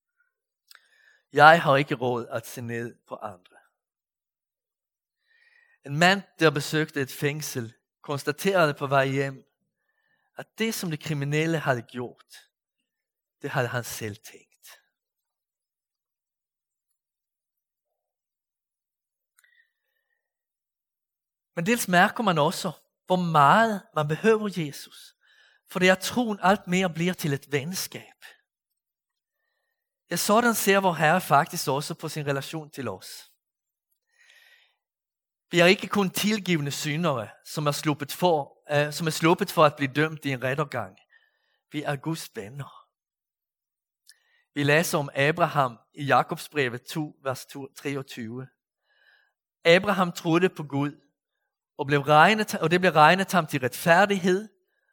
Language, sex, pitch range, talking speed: Danish, male, 140-195 Hz, 120 wpm